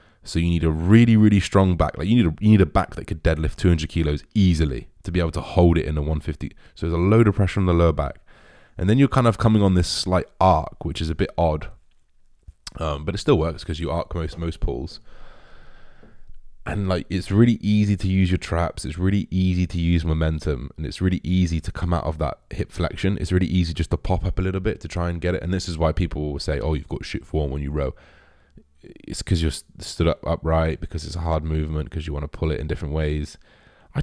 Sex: male